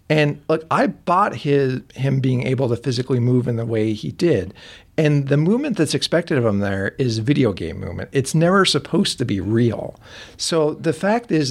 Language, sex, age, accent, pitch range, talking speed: English, male, 50-69, American, 105-145 Hz, 200 wpm